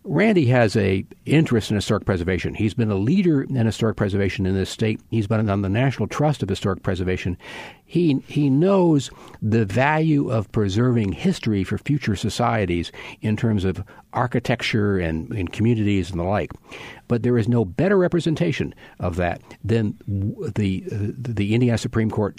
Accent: American